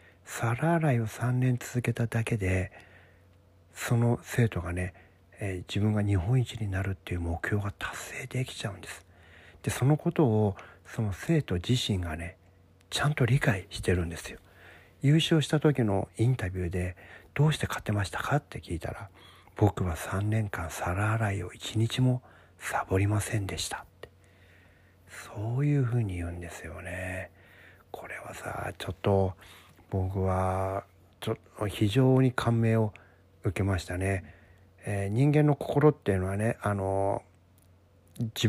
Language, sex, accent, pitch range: Japanese, male, native, 90-115 Hz